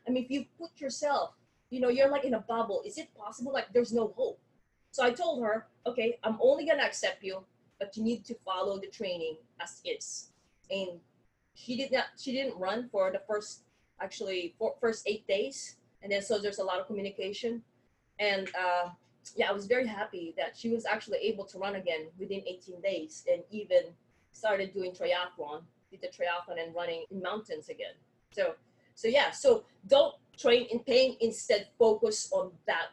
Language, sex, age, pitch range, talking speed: English, female, 20-39, 195-275 Hz, 190 wpm